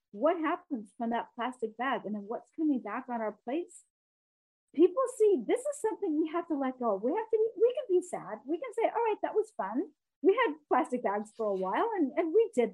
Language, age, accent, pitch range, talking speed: English, 40-59, American, 230-335 Hz, 235 wpm